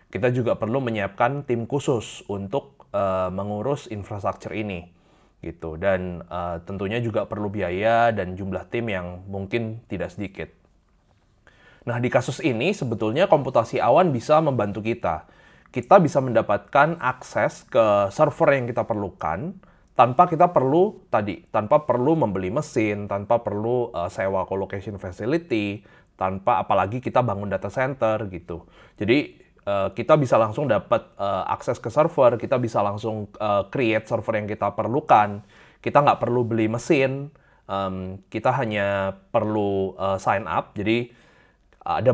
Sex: male